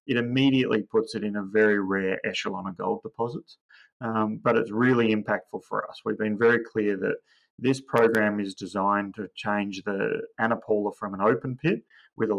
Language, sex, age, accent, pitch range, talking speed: English, male, 30-49, Australian, 110-120 Hz, 185 wpm